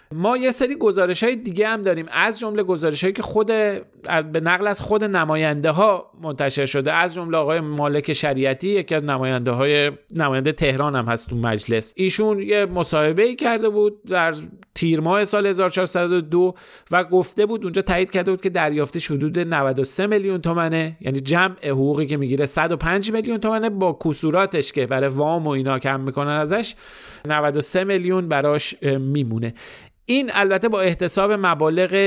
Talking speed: 155 wpm